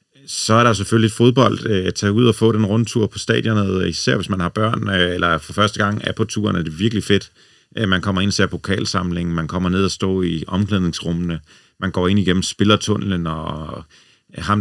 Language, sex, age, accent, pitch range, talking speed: Danish, male, 40-59, native, 90-105 Hz, 205 wpm